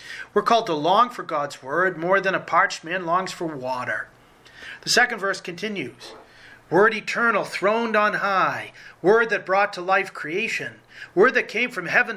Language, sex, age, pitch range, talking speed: English, male, 40-59, 170-210 Hz, 175 wpm